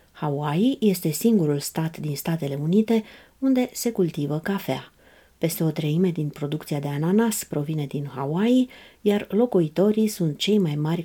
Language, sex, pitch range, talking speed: Romanian, female, 150-200 Hz, 145 wpm